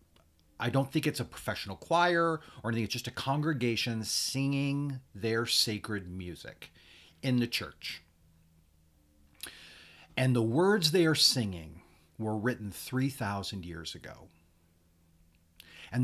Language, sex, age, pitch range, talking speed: English, male, 40-59, 85-120 Hz, 120 wpm